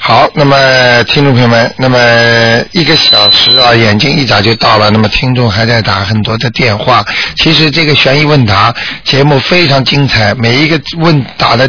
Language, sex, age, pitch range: Chinese, male, 50-69, 115-145 Hz